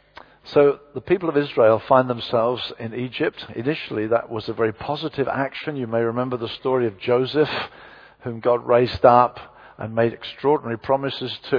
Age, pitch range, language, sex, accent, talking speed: 50-69, 120-145 Hz, English, male, British, 165 wpm